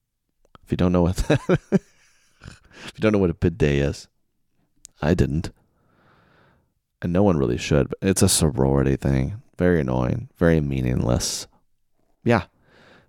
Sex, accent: male, American